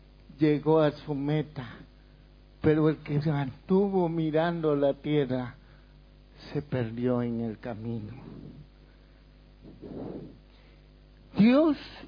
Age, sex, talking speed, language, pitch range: 60-79, male, 85 wpm, Spanish, 165-240 Hz